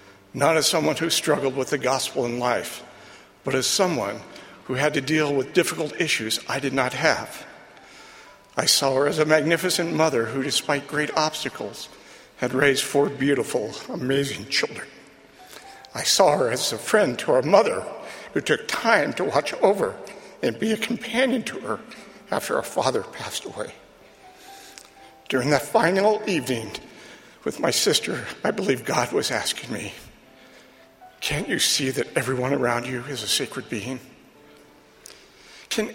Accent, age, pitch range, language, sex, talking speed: American, 60-79, 130-155 Hz, English, male, 155 wpm